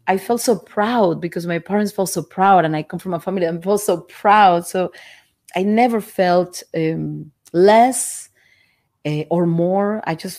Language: English